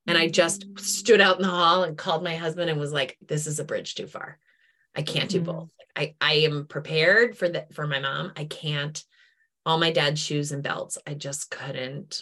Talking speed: 220 wpm